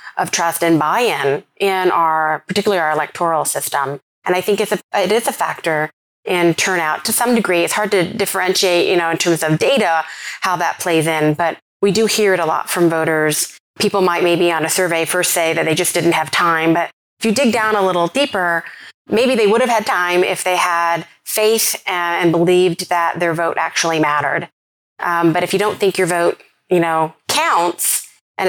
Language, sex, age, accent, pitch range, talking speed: English, female, 30-49, American, 165-200 Hz, 205 wpm